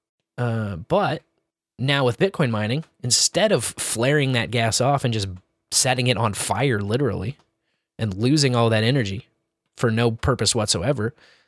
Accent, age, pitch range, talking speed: American, 20-39, 110-135 Hz, 145 wpm